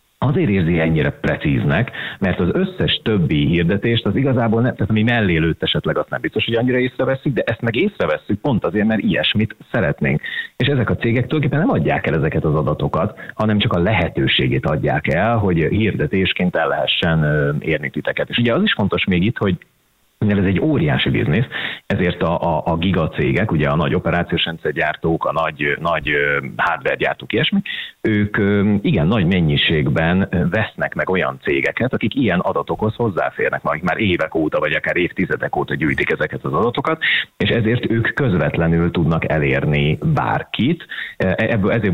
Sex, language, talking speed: male, Hungarian, 165 wpm